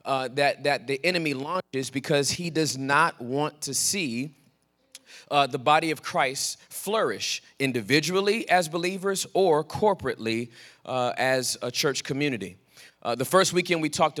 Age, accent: 30-49, American